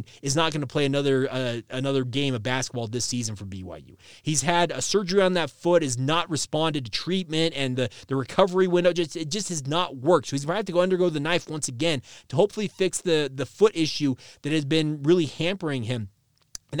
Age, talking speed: 30-49, 230 wpm